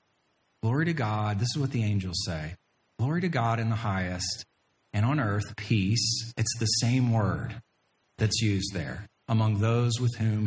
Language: English